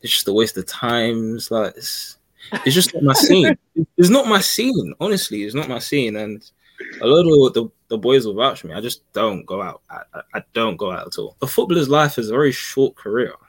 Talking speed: 235 wpm